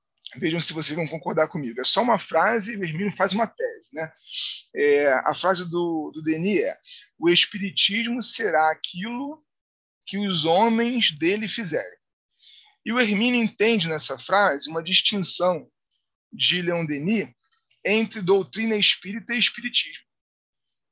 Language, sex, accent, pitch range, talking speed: Portuguese, male, Brazilian, 165-220 Hz, 140 wpm